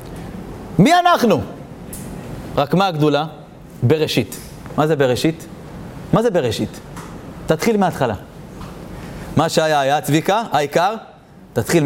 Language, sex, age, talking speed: Hebrew, male, 40-59, 100 wpm